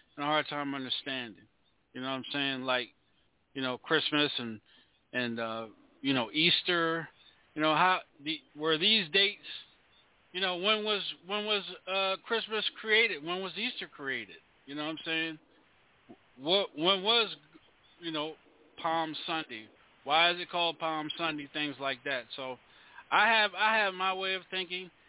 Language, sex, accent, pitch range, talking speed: English, male, American, 155-190 Hz, 165 wpm